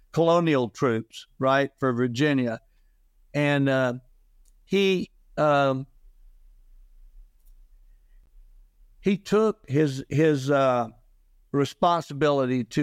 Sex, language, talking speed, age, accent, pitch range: male, English, 75 wpm, 60-79, American, 125-150 Hz